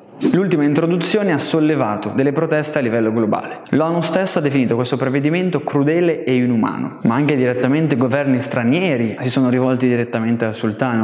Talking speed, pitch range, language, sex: 160 wpm, 120-150 Hz, Italian, male